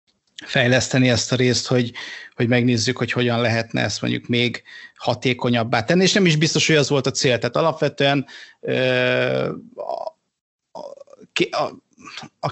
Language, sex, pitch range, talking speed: Hungarian, male, 120-140 Hz, 135 wpm